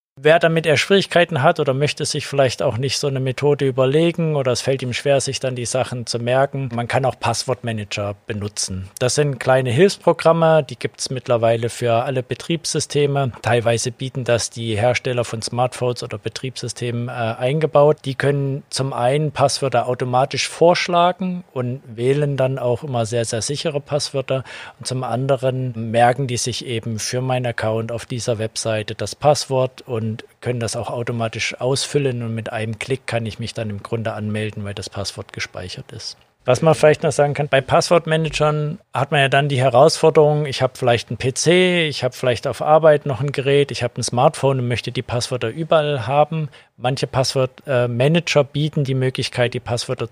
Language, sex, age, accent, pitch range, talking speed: German, male, 50-69, German, 115-145 Hz, 180 wpm